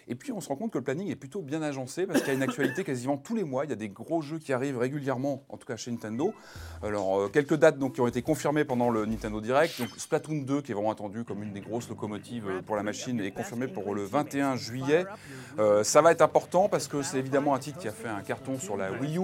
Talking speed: 280 wpm